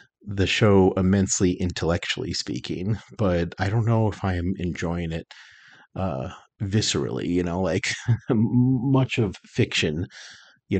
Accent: American